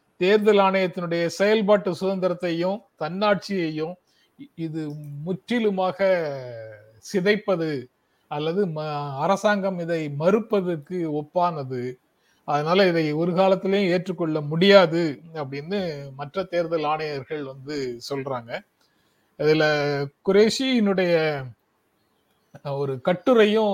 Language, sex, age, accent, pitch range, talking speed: Tamil, male, 30-49, native, 150-200 Hz, 75 wpm